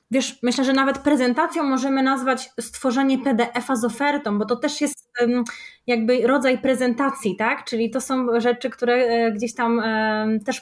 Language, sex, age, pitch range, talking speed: Polish, female, 20-39, 220-255 Hz, 155 wpm